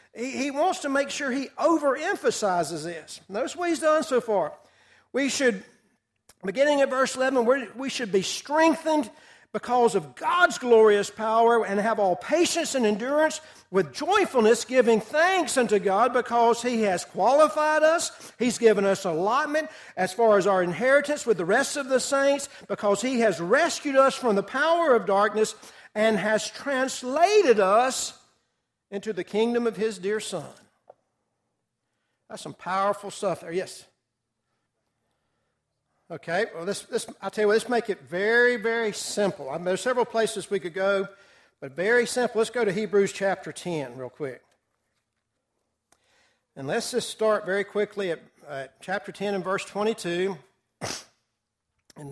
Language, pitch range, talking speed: English, 195-265 Hz, 150 wpm